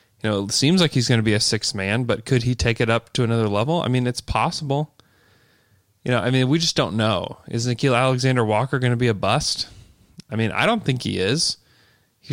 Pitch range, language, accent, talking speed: 105-125 Hz, English, American, 235 wpm